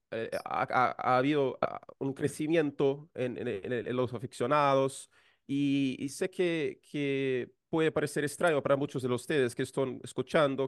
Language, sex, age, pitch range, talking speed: Spanish, male, 30-49, 125-150 Hz, 145 wpm